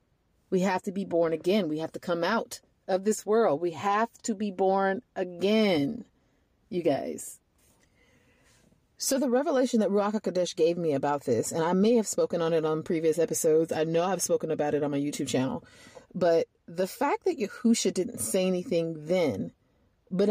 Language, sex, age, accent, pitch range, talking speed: English, female, 30-49, American, 170-220 Hz, 185 wpm